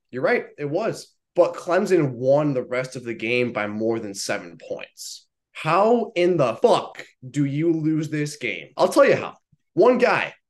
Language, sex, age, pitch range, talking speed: English, male, 20-39, 140-185 Hz, 185 wpm